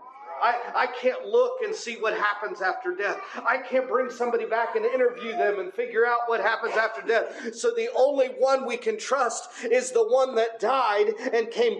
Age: 40-59